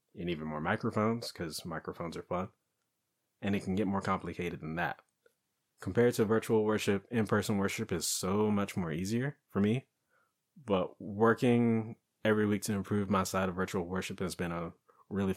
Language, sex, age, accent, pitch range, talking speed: English, male, 20-39, American, 90-105 Hz, 170 wpm